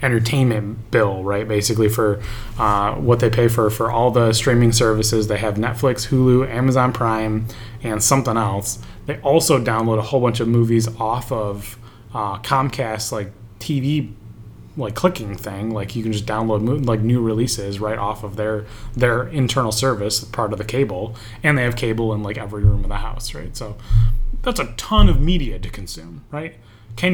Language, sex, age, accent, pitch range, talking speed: English, male, 20-39, American, 110-125 Hz, 180 wpm